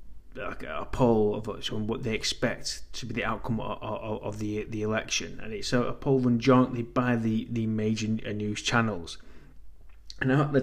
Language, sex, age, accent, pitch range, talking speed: English, male, 30-49, British, 105-125 Hz, 190 wpm